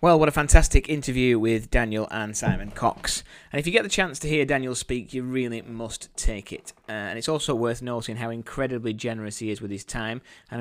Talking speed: 225 wpm